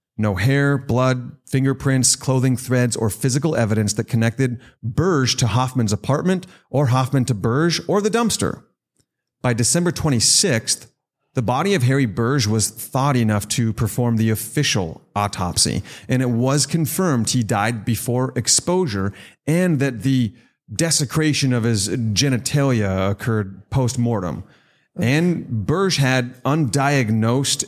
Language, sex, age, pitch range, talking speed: English, male, 30-49, 110-140 Hz, 130 wpm